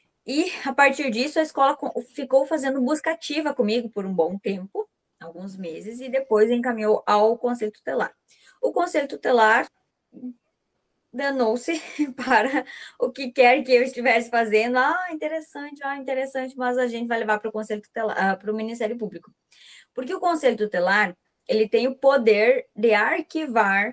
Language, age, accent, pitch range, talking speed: Portuguese, 20-39, Brazilian, 210-265 Hz, 155 wpm